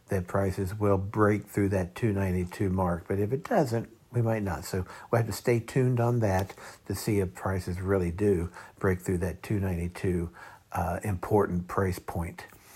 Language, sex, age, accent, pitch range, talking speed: English, male, 60-79, American, 95-105 Hz, 200 wpm